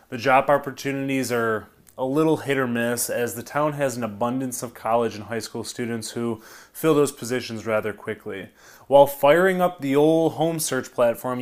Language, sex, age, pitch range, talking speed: English, male, 20-39, 120-150 Hz, 185 wpm